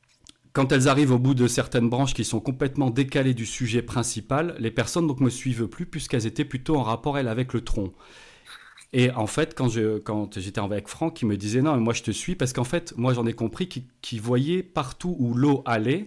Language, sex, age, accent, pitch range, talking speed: French, male, 40-59, French, 105-130 Hz, 235 wpm